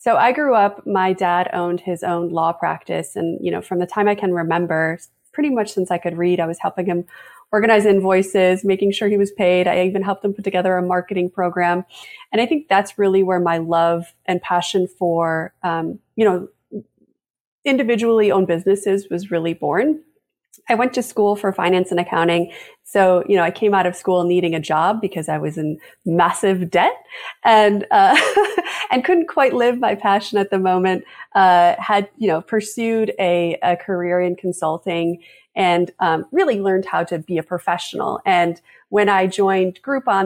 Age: 30-49